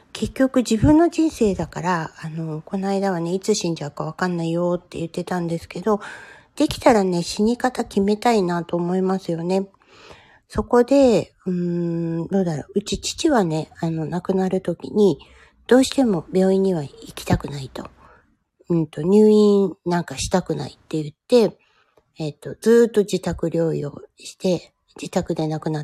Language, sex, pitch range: Japanese, female, 160-200 Hz